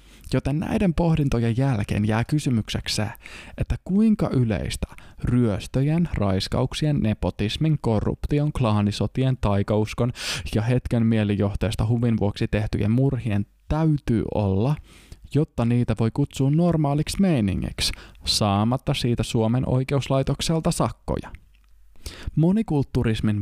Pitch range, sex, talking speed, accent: 100-135 Hz, male, 90 wpm, native